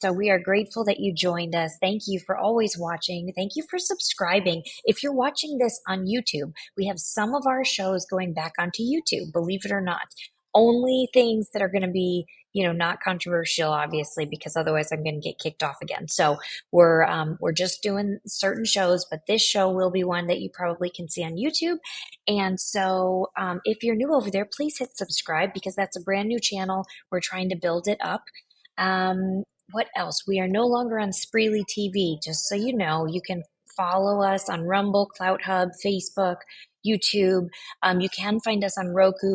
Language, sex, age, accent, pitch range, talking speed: English, female, 20-39, American, 180-210 Hz, 205 wpm